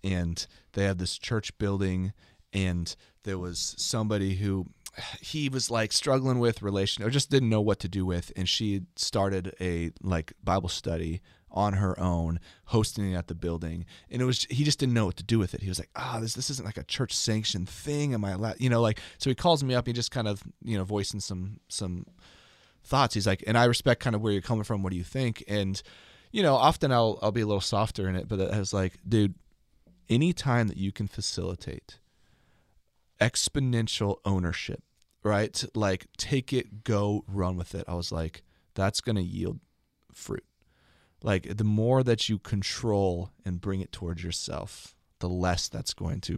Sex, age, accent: male, 30-49, American